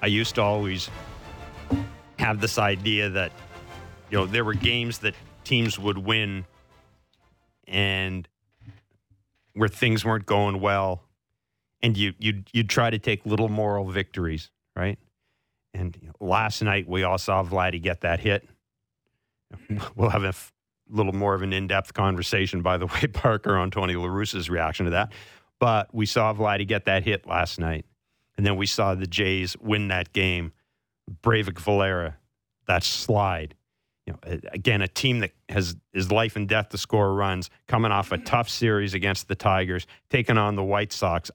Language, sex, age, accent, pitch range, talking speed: English, male, 40-59, American, 95-110 Hz, 165 wpm